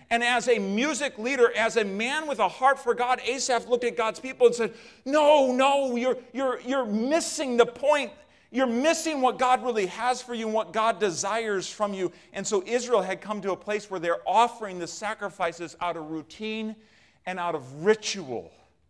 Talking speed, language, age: 195 wpm, English, 40-59